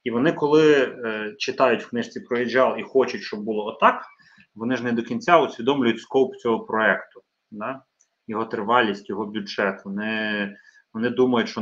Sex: male